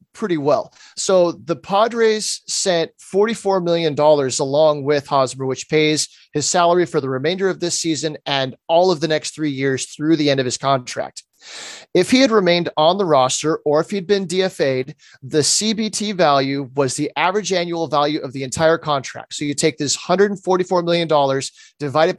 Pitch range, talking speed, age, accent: 145-180 Hz, 180 wpm, 30-49, American